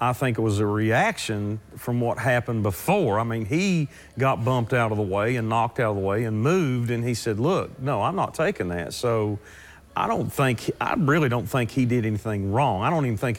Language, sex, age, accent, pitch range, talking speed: English, male, 40-59, American, 105-125 Hz, 235 wpm